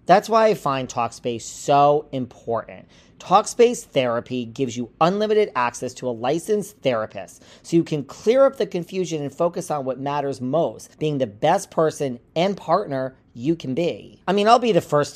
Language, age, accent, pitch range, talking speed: English, 40-59, American, 125-180 Hz, 180 wpm